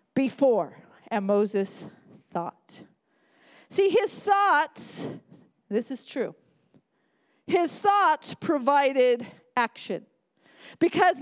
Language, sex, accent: English, female, American